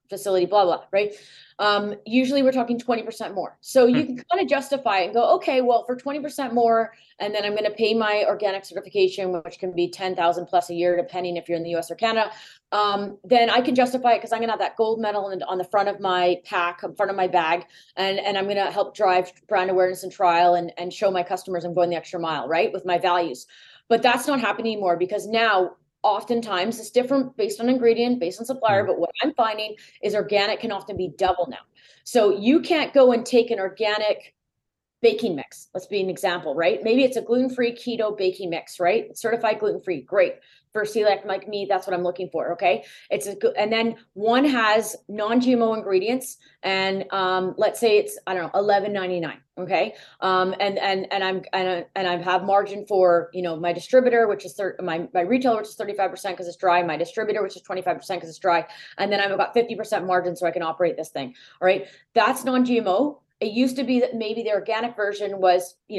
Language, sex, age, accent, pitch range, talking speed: English, female, 30-49, American, 185-230 Hz, 220 wpm